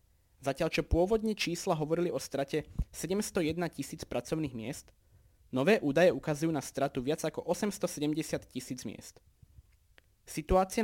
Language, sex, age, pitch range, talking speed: Slovak, male, 20-39, 130-180 Hz, 120 wpm